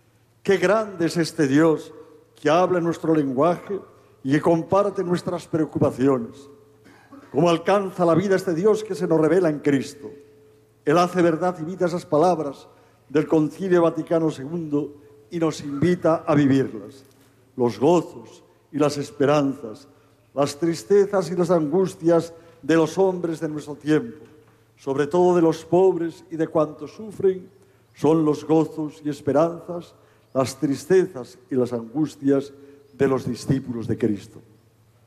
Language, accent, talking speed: Spanish, Spanish, 140 wpm